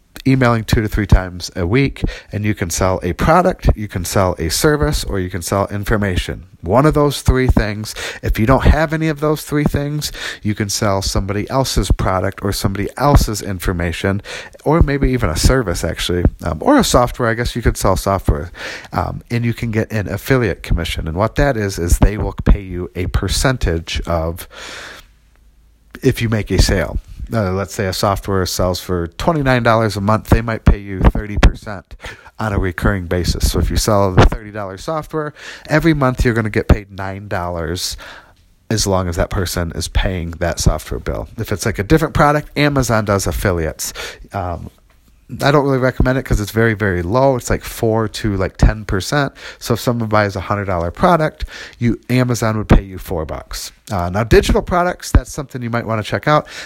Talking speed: 195 wpm